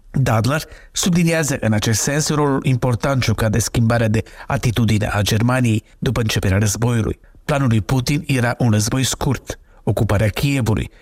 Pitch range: 110-130 Hz